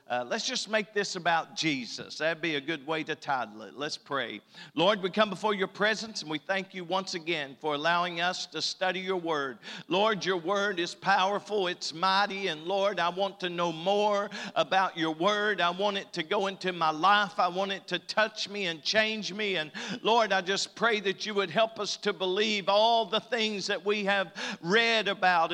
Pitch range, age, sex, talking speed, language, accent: 165-210 Hz, 50-69, male, 210 wpm, English, American